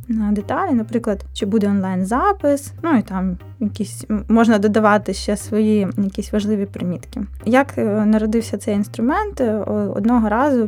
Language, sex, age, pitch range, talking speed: Ukrainian, female, 20-39, 195-230 Hz, 130 wpm